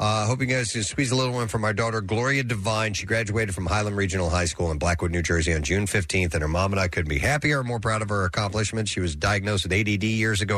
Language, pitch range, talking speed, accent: English, 95-145 Hz, 285 wpm, American